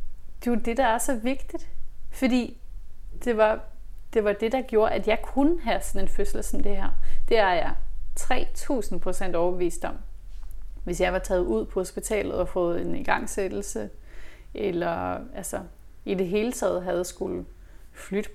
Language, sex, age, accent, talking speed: Danish, female, 30-49, native, 165 wpm